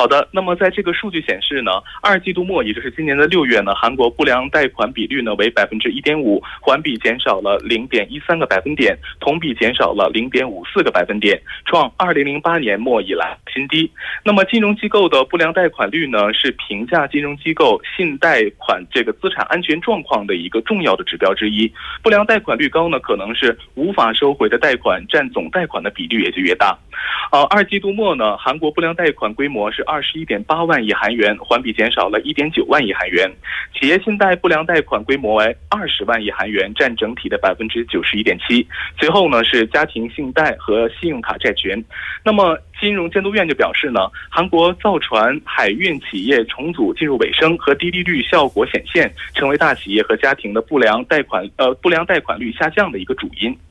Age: 20-39